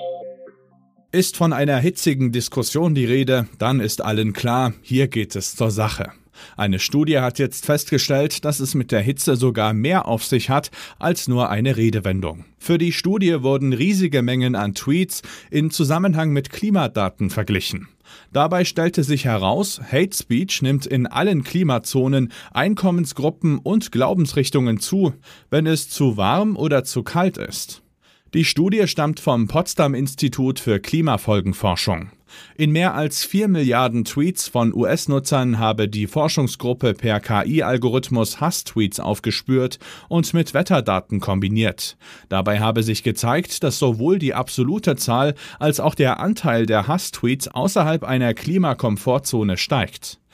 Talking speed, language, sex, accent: 135 wpm, German, male, German